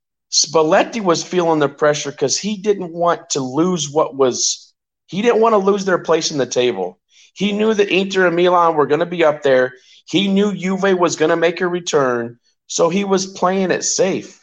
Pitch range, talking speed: 140-195 Hz, 210 wpm